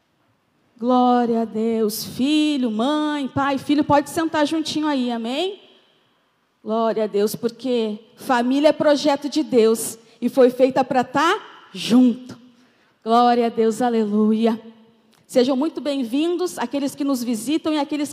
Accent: Brazilian